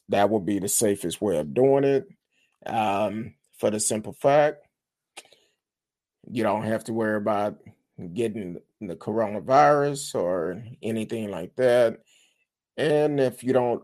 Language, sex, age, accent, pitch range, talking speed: English, male, 30-49, American, 95-115 Hz, 135 wpm